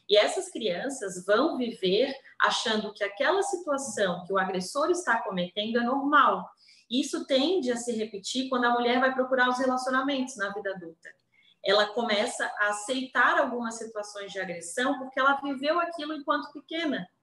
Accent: Brazilian